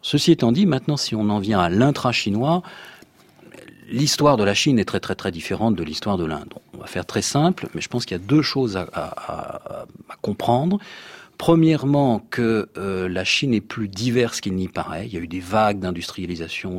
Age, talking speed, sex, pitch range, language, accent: 40-59, 205 wpm, male, 90-125 Hz, French, French